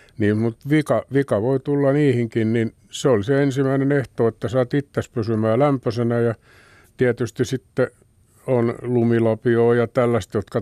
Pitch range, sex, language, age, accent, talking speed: 95-120 Hz, male, Finnish, 60-79, native, 145 wpm